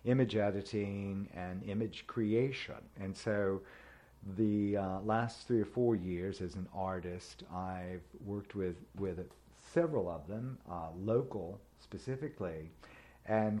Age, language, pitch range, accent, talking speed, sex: 50-69, English, 90-110 Hz, American, 125 wpm, male